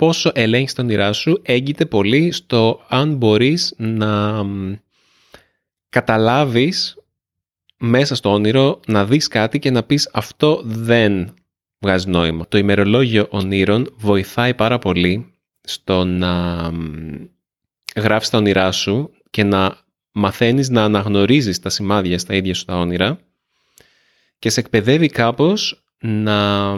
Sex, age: male, 20-39